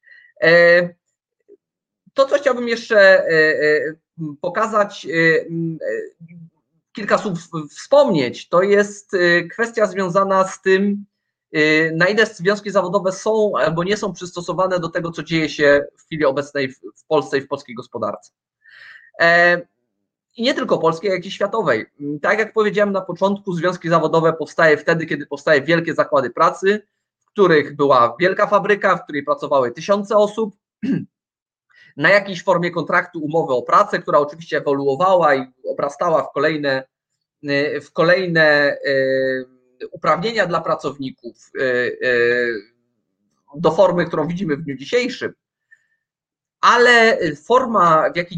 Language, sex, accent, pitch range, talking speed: Polish, male, native, 155-205 Hz, 120 wpm